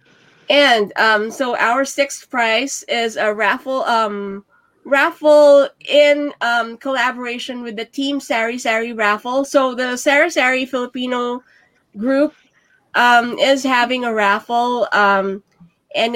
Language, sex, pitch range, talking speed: English, female, 225-275 Hz, 115 wpm